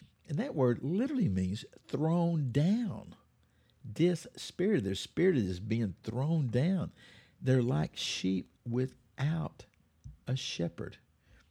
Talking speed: 105 wpm